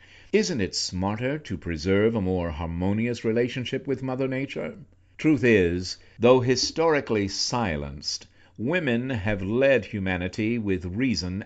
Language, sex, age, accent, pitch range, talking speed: English, male, 60-79, American, 95-130 Hz, 120 wpm